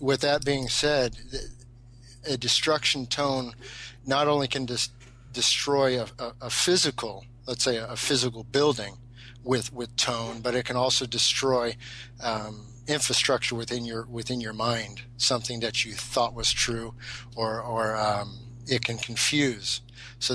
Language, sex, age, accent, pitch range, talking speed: English, male, 40-59, American, 115-125 Hz, 145 wpm